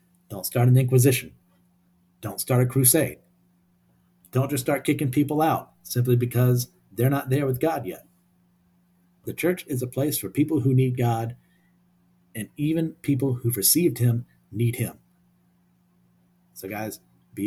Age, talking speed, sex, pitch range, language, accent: 50-69, 150 wpm, male, 90-150 Hz, English, American